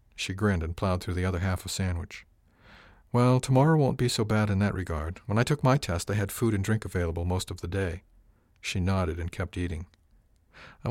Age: 50-69